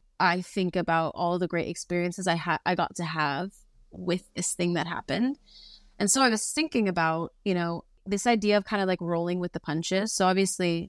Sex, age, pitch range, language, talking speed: female, 20-39, 175-225 Hz, English, 210 wpm